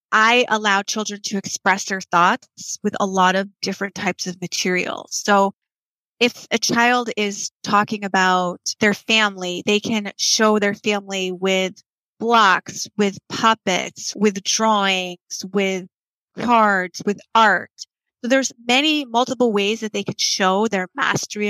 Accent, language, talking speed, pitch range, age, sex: American, English, 140 wpm, 195-225 Hz, 30-49, female